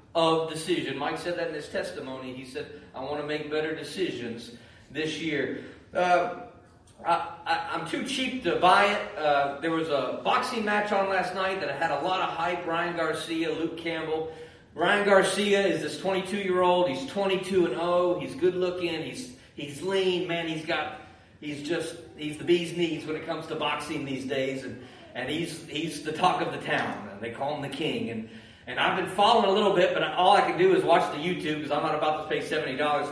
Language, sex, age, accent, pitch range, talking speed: English, male, 40-59, American, 150-190 Hz, 215 wpm